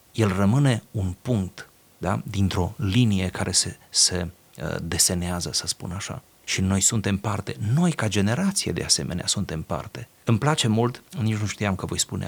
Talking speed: 165 wpm